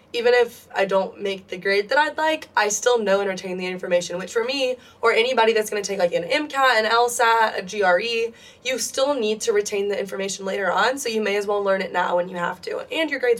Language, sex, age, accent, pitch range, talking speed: English, female, 20-39, American, 200-260 Hz, 255 wpm